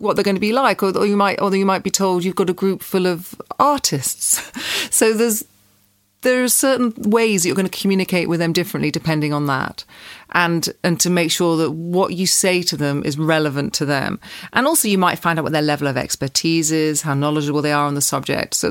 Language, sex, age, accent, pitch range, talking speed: English, female, 40-59, British, 165-210 Hz, 230 wpm